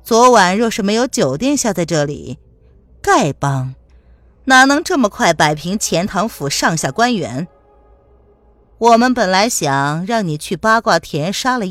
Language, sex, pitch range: Chinese, female, 135-225 Hz